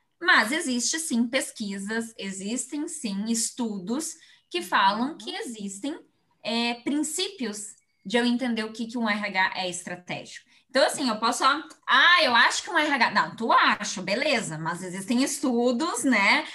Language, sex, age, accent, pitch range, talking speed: Portuguese, female, 20-39, Brazilian, 220-285 Hz, 150 wpm